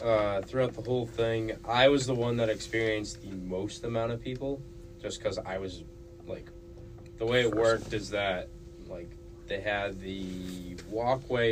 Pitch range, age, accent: 95-115 Hz, 20-39, American